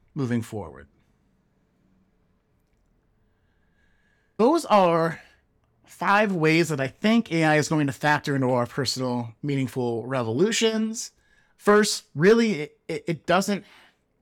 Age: 30-49